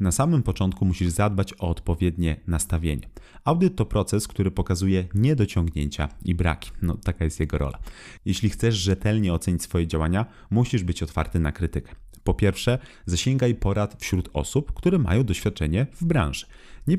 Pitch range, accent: 85-115 Hz, native